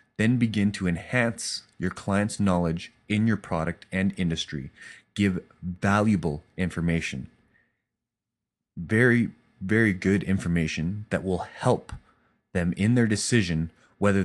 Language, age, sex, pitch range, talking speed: English, 30-49, male, 90-115 Hz, 115 wpm